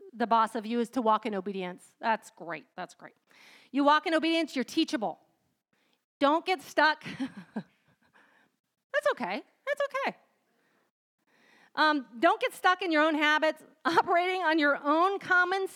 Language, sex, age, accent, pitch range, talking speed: English, female, 40-59, American, 230-305 Hz, 150 wpm